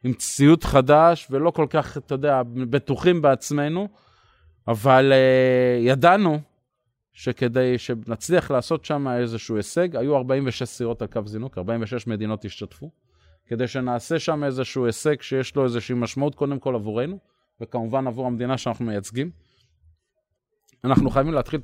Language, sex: Hebrew, male